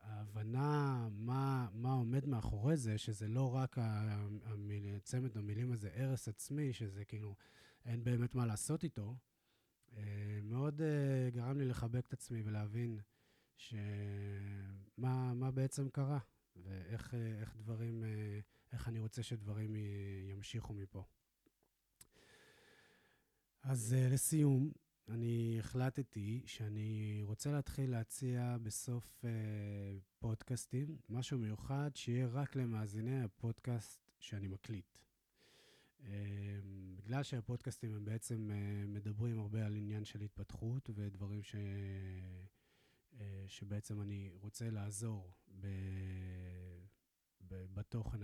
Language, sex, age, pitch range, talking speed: Hebrew, male, 20-39, 105-125 Hz, 105 wpm